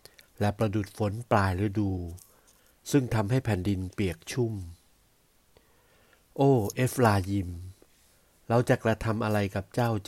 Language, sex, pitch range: Thai, male, 95-115 Hz